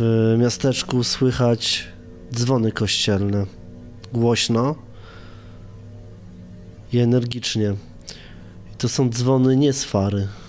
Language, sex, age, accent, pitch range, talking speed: Polish, male, 20-39, native, 110-130 Hz, 85 wpm